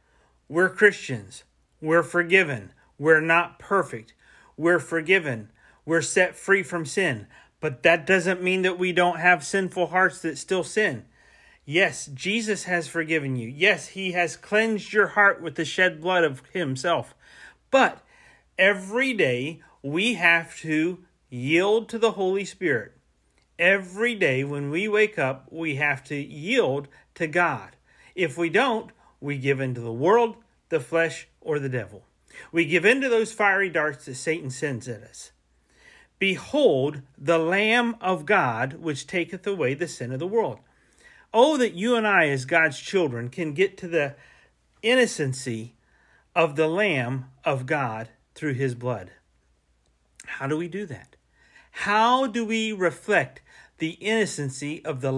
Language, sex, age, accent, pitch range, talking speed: English, male, 40-59, American, 140-195 Hz, 150 wpm